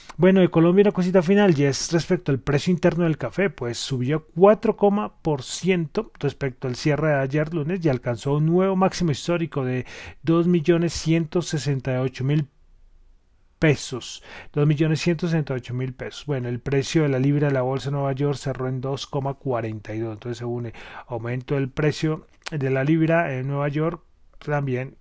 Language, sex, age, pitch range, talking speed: Spanish, male, 30-49, 130-170 Hz, 160 wpm